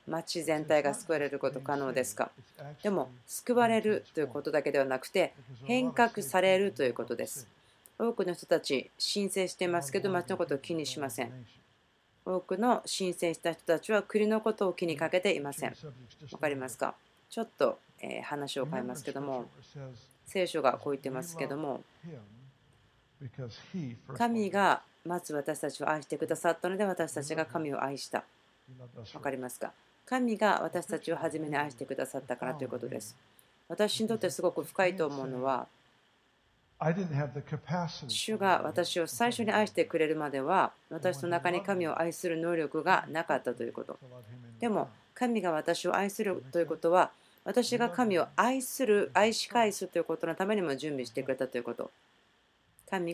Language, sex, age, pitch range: Japanese, female, 40-59, 135-190 Hz